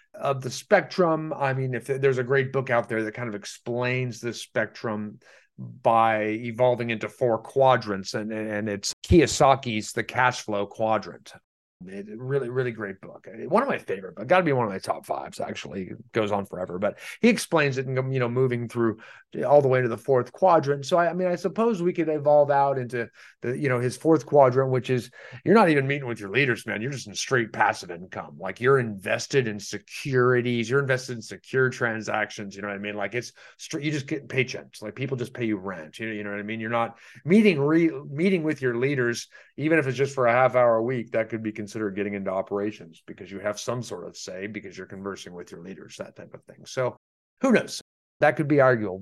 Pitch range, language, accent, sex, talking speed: 110-140 Hz, English, American, male, 230 wpm